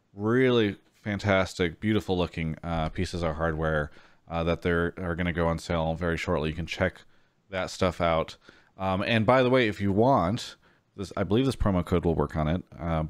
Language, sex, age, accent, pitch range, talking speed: English, male, 30-49, American, 85-105 Hz, 200 wpm